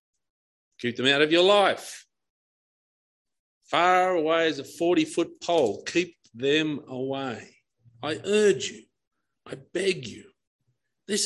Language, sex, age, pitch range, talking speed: English, male, 50-69, 140-200 Hz, 115 wpm